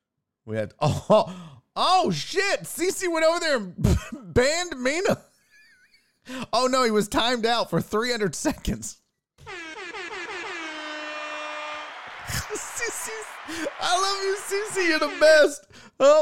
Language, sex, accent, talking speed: English, male, American, 120 wpm